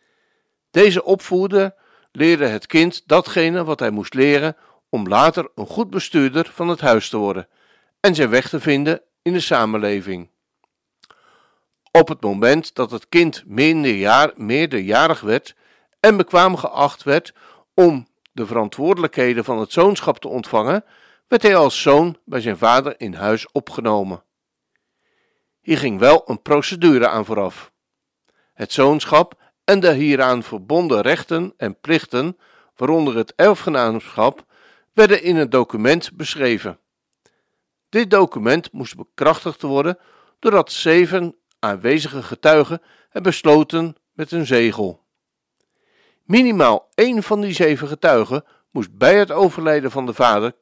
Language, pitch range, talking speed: Dutch, 135-180 Hz, 130 wpm